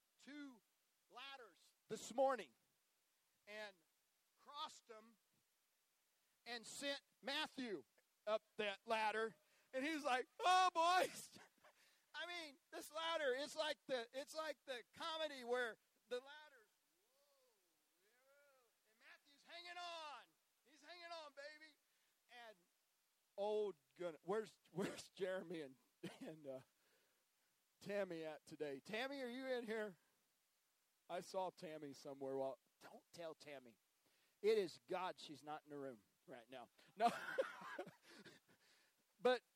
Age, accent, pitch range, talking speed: 40-59, American, 165-270 Hz, 120 wpm